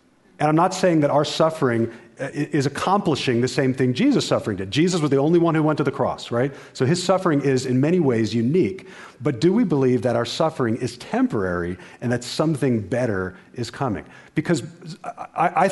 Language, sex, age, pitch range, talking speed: English, male, 40-59, 110-150 Hz, 195 wpm